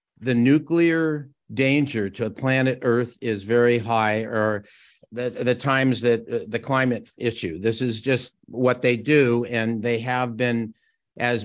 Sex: male